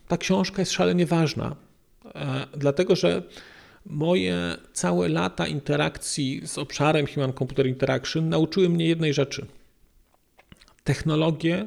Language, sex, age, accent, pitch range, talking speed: Polish, male, 40-59, native, 140-165 Hz, 110 wpm